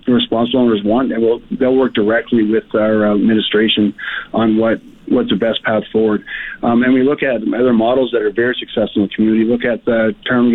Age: 40-59